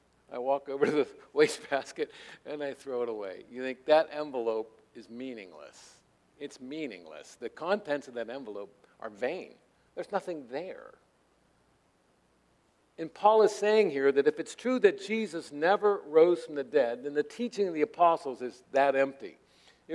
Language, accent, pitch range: English, American, 140-210 Hz